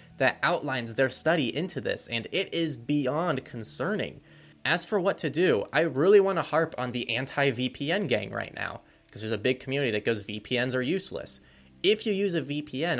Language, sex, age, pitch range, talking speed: English, male, 20-39, 105-145 Hz, 195 wpm